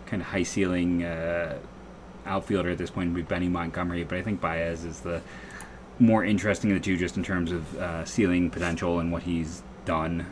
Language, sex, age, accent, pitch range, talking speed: English, male, 30-49, American, 85-105 Hz, 200 wpm